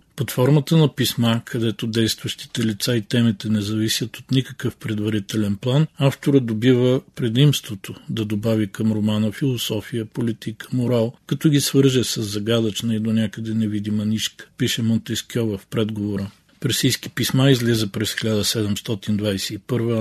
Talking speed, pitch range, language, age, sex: 130 wpm, 105-125 Hz, Bulgarian, 40-59, male